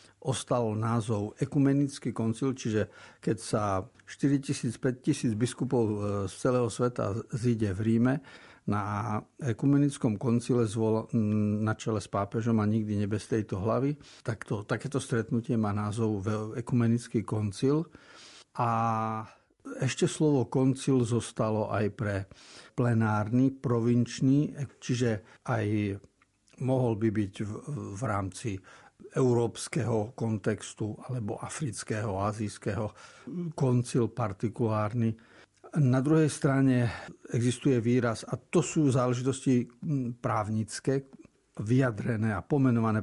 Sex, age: male, 50-69